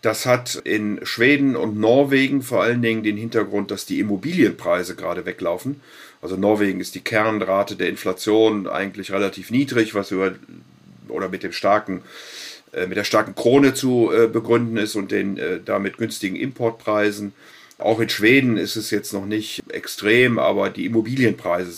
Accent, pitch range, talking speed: German, 100-120 Hz, 165 wpm